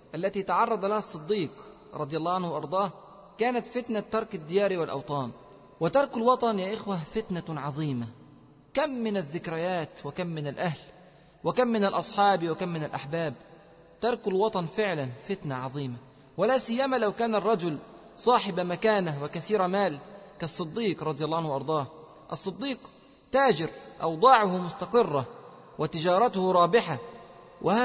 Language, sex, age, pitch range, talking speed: Arabic, male, 30-49, 160-220 Hz, 125 wpm